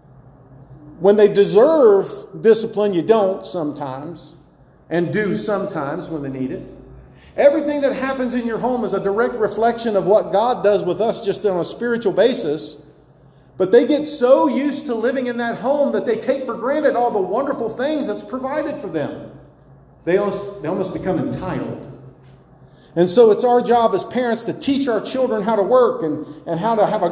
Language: English